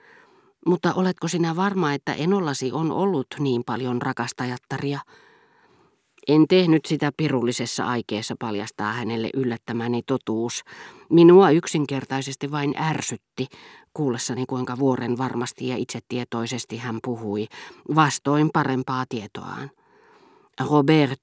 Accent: native